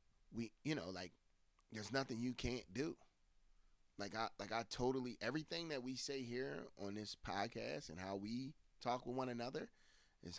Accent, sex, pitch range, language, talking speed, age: American, male, 95-130 Hz, English, 175 wpm, 30-49